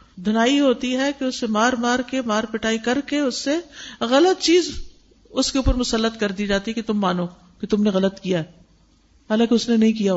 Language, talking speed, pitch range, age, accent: English, 190 wpm, 215-290 Hz, 50-69, Indian